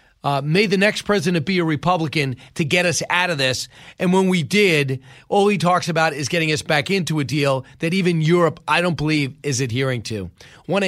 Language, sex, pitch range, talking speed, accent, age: English, male, 145-175 Hz, 215 wpm, American, 30-49